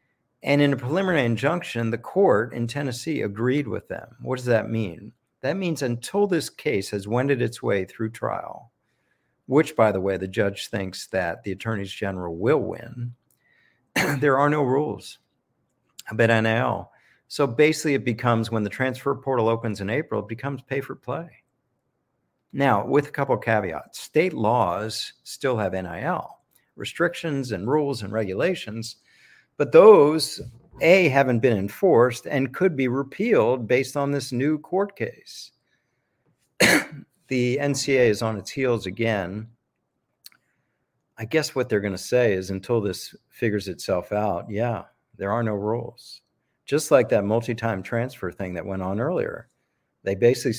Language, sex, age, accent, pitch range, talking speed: English, male, 50-69, American, 105-135 Hz, 155 wpm